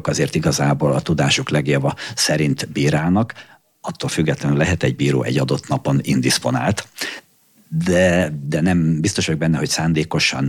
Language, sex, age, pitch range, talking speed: Hungarian, male, 50-69, 75-95 Hz, 135 wpm